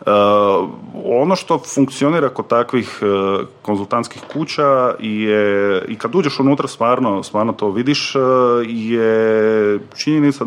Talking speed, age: 110 wpm, 30-49